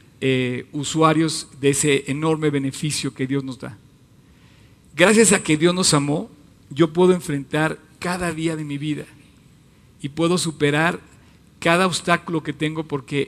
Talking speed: 145 wpm